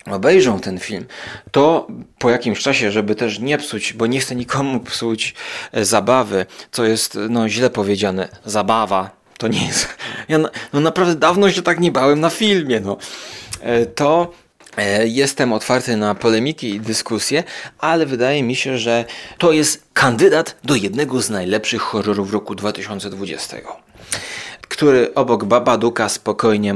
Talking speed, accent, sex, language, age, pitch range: 150 wpm, native, male, Polish, 30-49, 110-140 Hz